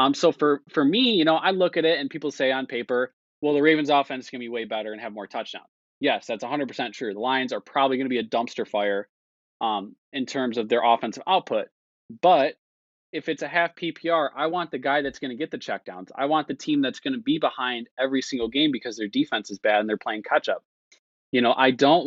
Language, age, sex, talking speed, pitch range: English, 20-39, male, 250 wpm, 115-150 Hz